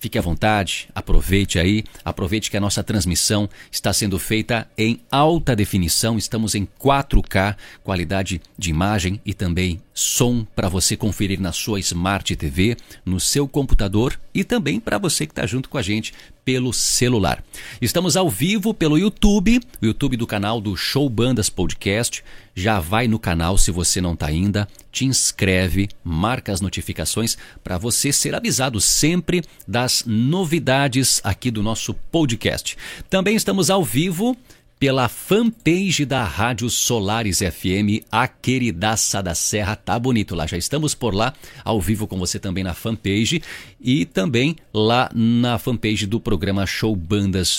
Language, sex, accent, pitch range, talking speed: Portuguese, male, Brazilian, 95-130 Hz, 155 wpm